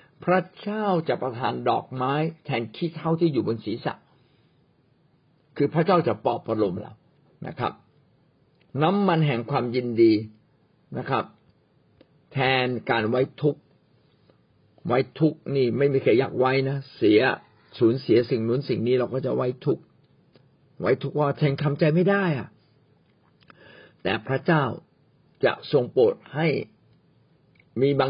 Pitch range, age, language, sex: 120-155 Hz, 60-79, Thai, male